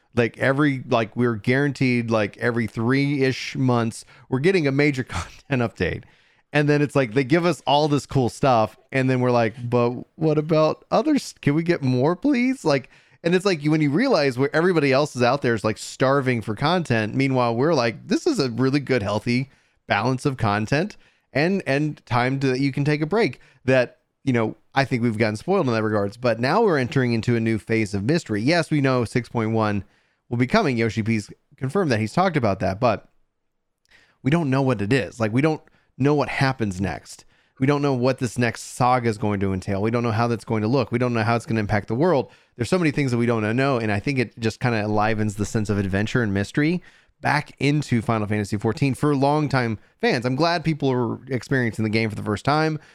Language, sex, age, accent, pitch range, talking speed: English, male, 30-49, American, 115-140 Hz, 230 wpm